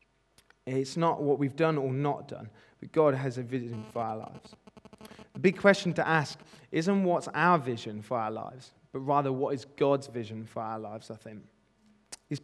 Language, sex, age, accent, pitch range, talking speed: English, male, 20-39, British, 120-160 Hz, 195 wpm